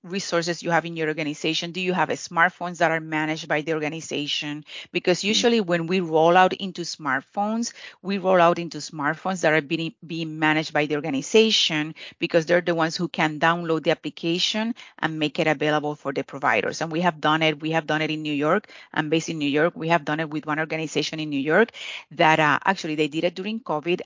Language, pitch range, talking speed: English, 155-185 Hz, 220 wpm